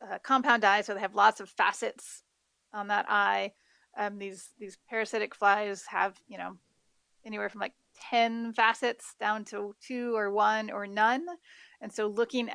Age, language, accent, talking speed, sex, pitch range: 30-49, English, American, 165 wpm, female, 205-230 Hz